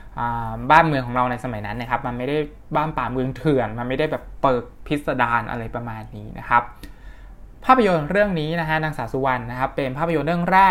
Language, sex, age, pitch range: Thai, male, 20-39, 120-150 Hz